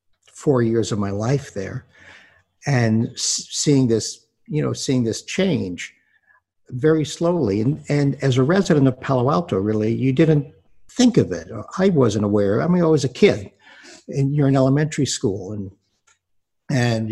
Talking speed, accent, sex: 160 wpm, American, male